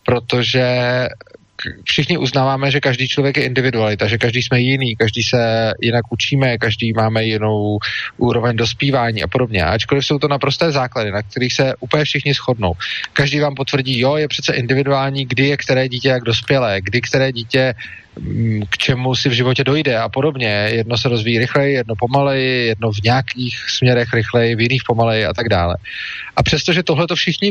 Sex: male